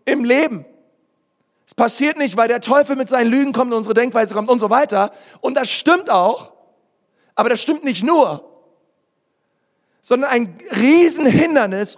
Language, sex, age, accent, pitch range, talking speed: German, male, 40-59, German, 215-285 Hz, 155 wpm